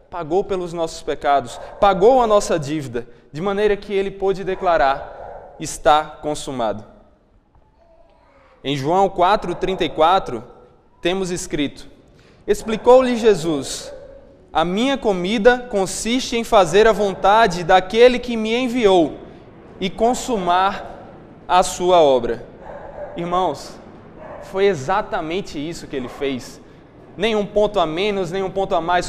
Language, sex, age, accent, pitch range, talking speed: Portuguese, male, 20-39, Brazilian, 165-210 Hz, 120 wpm